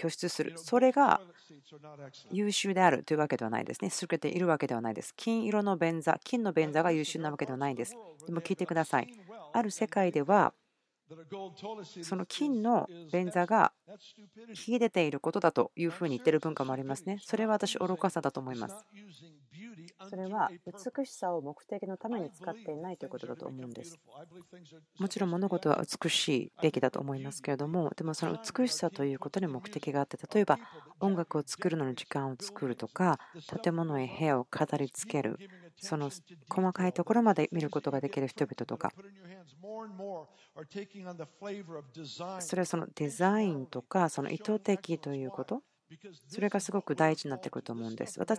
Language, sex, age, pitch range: Japanese, female, 40-59, 150-200 Hz